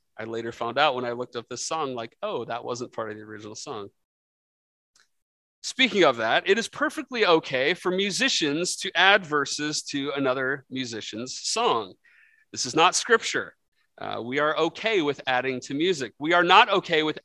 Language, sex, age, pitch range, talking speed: English, male, 30-49, 135-185 Hz, 180 wpm